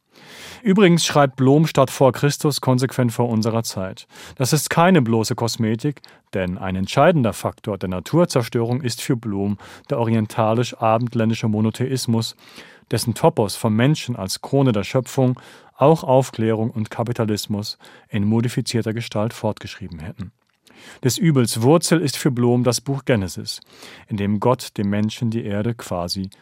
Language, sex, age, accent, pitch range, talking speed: German, male, 40-59, German, 110-130 Hz, 140 wpm